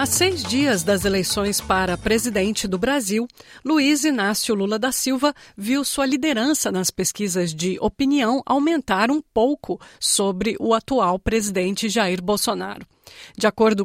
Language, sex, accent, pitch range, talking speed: Portuguese, female, Brazilian, 205-275 Hz, 140 wpm